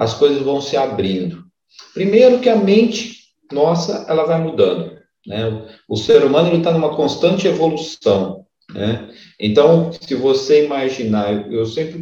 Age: 40-59